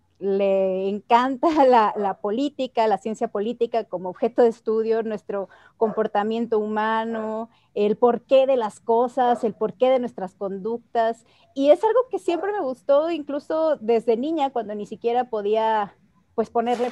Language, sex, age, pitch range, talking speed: Spanish, female, 30-49, 210-260 Hz, 145 wpm